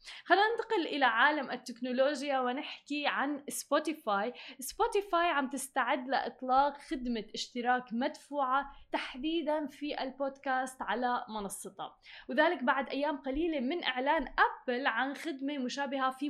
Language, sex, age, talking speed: Arabic, female, 10-29, 115 wpm